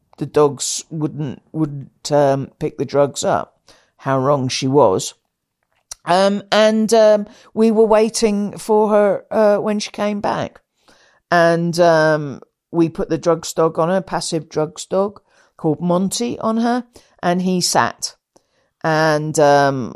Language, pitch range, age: English, 140-175 Hz, 50-69